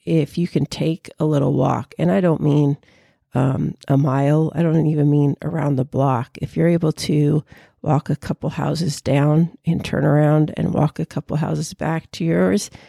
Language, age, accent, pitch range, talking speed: English, 50-69, American, 150-175 Hz, 190 wpm